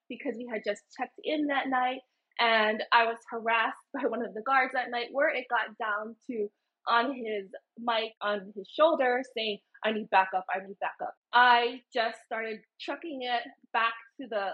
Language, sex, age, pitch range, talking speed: English, female, 20-39, 215-270 Hz, 185 wpm